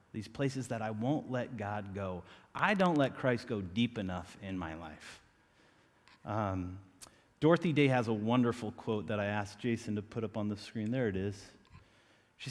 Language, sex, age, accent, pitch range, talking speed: English, male, 30-49, American, 100-135 Hz, 185 wpm